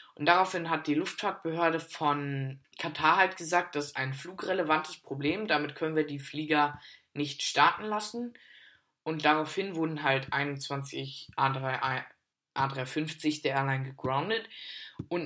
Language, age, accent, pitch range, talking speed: German, 20-39, German, 140-170 Hz, 125 wpm